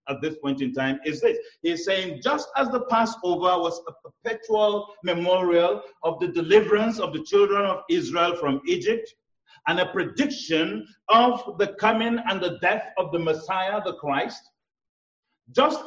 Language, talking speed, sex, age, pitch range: English, 160 wpm, male, 50-69, 185-275 Hz